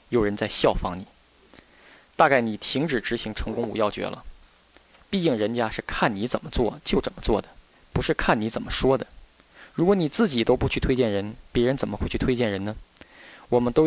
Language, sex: Chinese, male